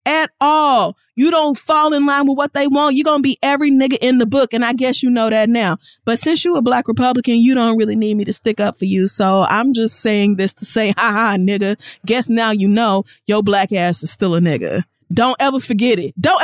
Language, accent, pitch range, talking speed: English, American, 200-255 Hz, 250 wpm